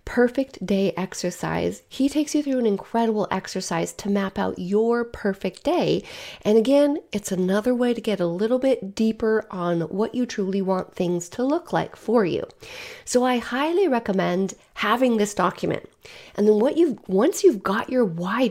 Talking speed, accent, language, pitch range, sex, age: 175 wpm, American, English, 185-245 Hz, female, 30-49